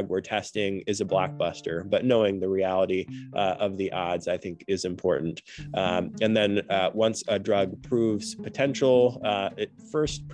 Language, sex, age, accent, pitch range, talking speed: English, male, 20-39, American, 95-110 Hz, 170 wpm